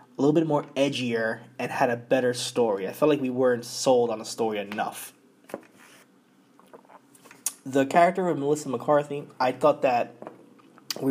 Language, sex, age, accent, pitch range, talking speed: English, male, 20-39, American, 120-150 Hz, 155 wpm